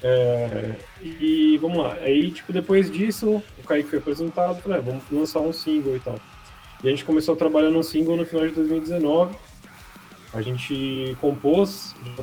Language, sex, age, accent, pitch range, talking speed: Portuguese, male, 20-39, Brazilian, 125-160 Hz, 180 wpm